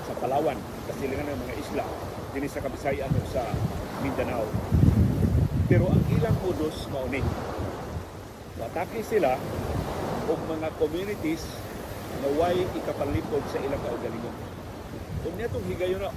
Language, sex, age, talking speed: Filipino, male, 50-69, 110 wpm